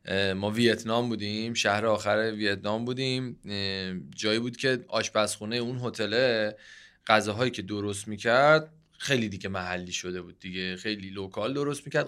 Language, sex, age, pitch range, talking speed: Persian, male, 20-39, 110-145 Hz, 135 wpm